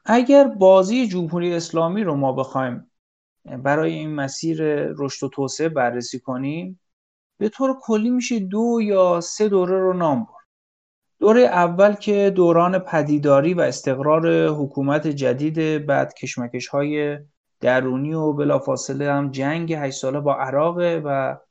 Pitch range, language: 150-215 Hz, Persian